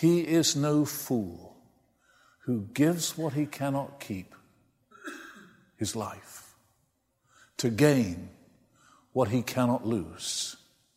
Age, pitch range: 60-79, 110-145 Hz